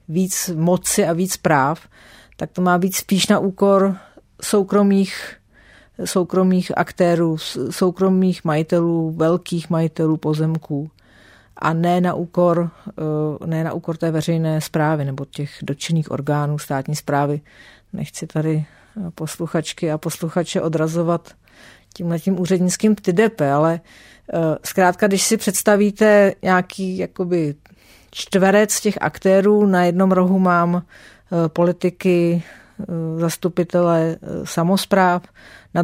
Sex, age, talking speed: female, 40-59, 105 wpm